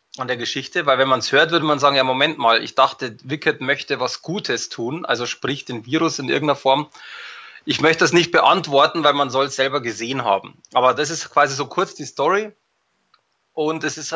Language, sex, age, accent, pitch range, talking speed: German, male, 20-39, German, 130-155 Hz, 220 wpm